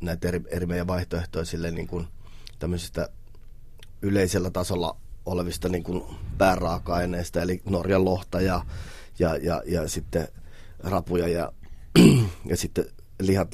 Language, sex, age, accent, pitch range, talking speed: Finnish, male, 30-49, native, 85-100 Hz, 115 wpm